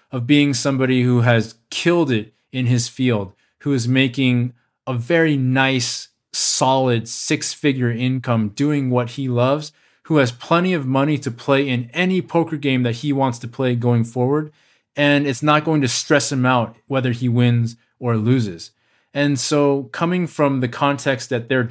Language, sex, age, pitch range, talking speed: English, male, 20-39, 120-145 Hz, 170 wpm